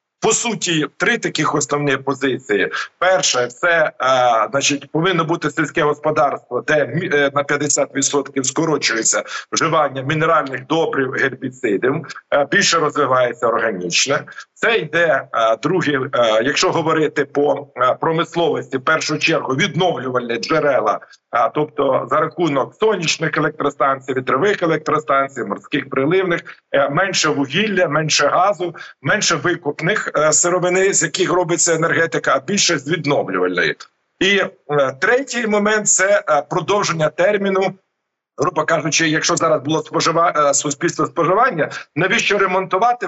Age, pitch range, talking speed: 50-69, 145-185 Hz, 110 wpm